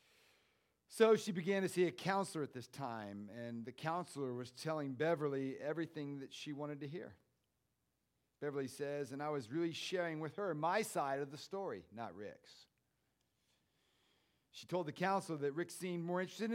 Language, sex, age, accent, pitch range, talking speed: English, male, 40-59, American, 115-160 Hz, 175 wpm